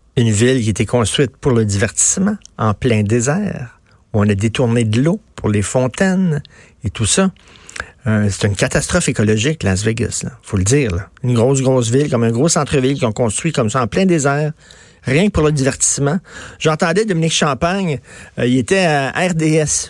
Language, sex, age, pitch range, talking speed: French, male, 50-69, 115-155 Hz, 190 wpm